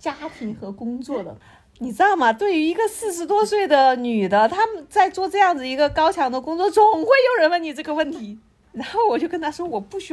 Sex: female